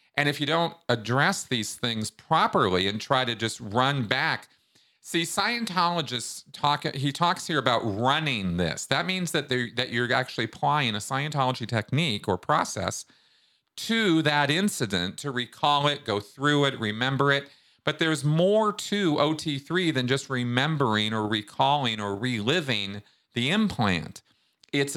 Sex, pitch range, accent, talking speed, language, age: male, 110-150 Hz, American, 145 wpm, English, 40-59